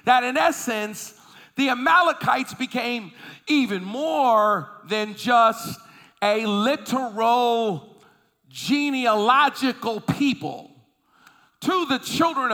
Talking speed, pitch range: 80 wpm, 220-325 Hz